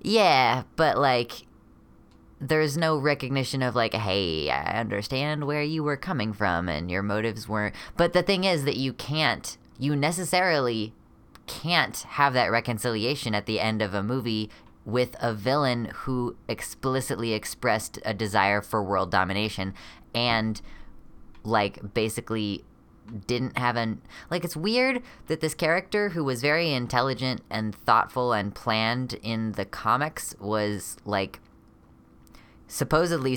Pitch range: 105-130 Hz